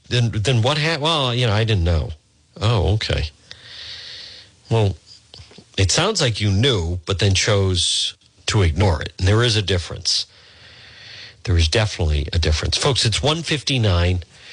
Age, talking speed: 50-69, 155 wpm